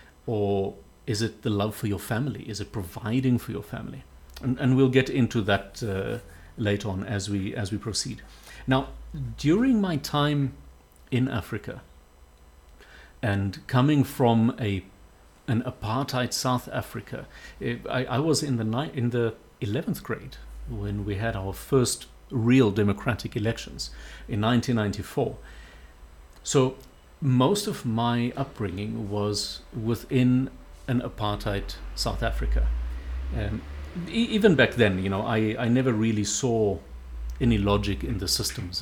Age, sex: 50-69, male